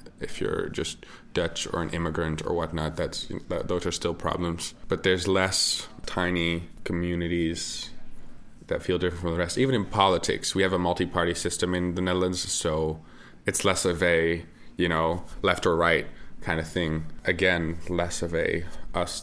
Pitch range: 80-95 Hz